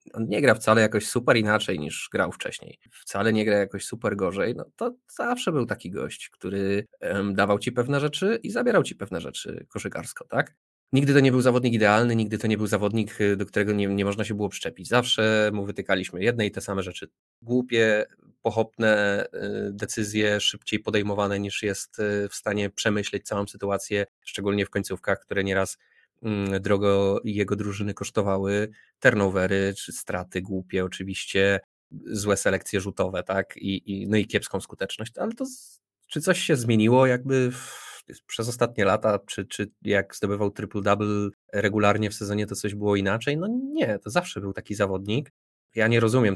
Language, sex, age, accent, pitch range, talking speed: Polish, male, 20-39, native, 100-115 Hz, 165 wpm